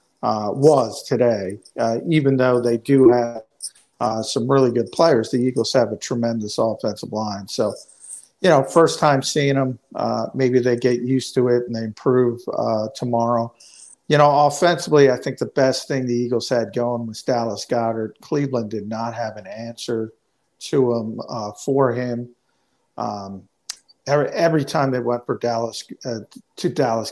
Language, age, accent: English, 50-69, American